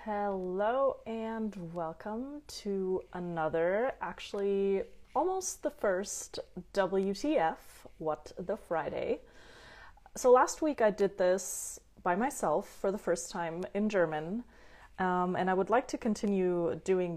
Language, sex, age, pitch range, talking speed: German, female, 20-39, 170-220 Hz, 120 wpm